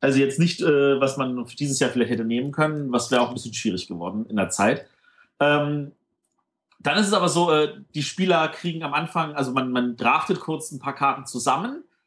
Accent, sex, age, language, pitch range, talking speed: German, male, 30-49, German, 130-165 Hz, 220 wpm